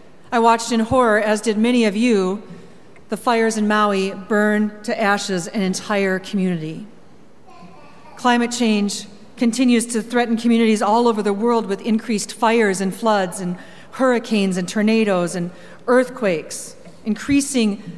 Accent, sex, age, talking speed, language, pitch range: American, female, 40-59, 135 wpm, English, 190-230 Hz